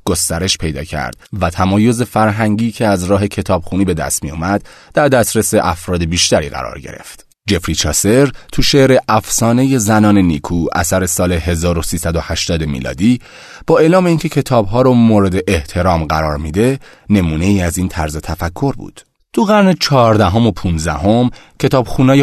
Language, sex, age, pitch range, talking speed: Persian, male, 30-49, 85-120 Hz, 140 wpm